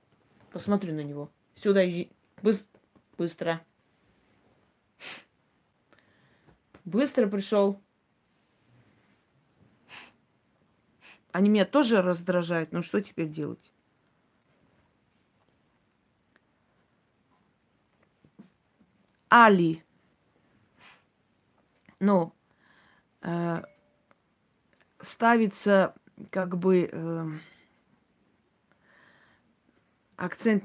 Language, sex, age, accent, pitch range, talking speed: Russian, female, 30-49, native, 170-210 Hz, 45 wpm